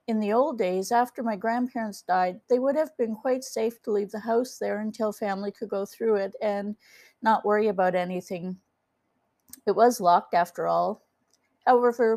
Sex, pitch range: female, 200-240 Hz